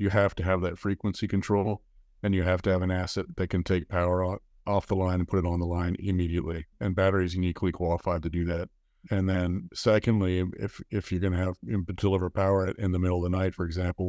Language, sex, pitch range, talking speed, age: English, male, 90-100 Hz, 240 wpm, 30-49